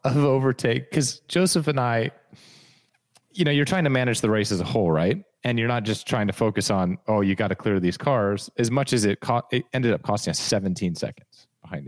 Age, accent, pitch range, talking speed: 30-49, American, 110-135 Hz, 235 wpm